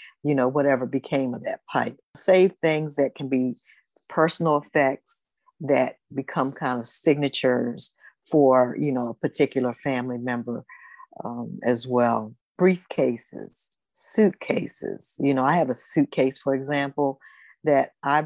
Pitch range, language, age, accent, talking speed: 135-160 Hz, English, 50-69, American, 135 wpm